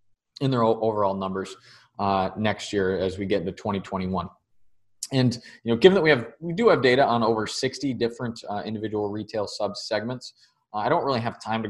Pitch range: 100-120 Hz